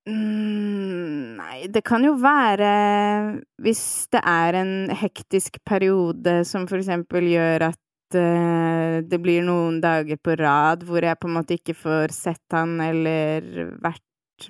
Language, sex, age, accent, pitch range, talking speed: English, female, 20-39, Swedish, 155-180 Hz, 135 wpm